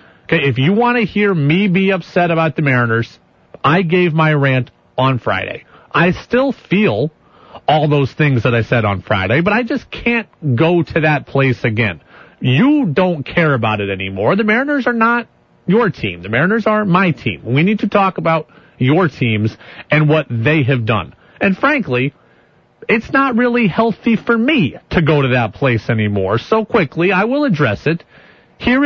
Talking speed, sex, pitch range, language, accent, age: 180 wpm, male, 125-205 Hz, English, American, 40-59